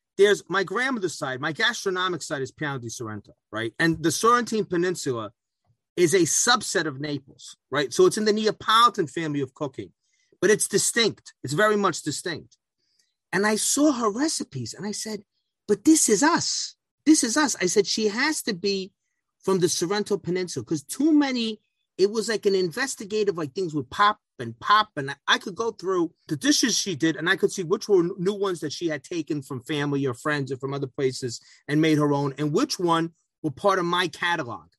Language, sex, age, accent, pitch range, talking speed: English, male, 30-49, American, 155-225 Hz, 200 wpm